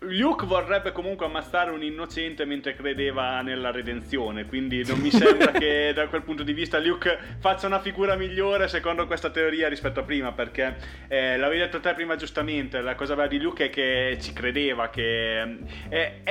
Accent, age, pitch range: native, 30-49, 135-185 Hz